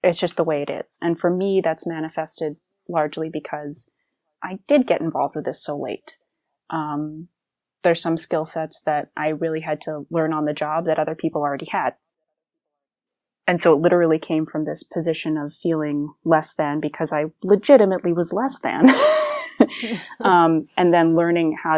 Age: 20-39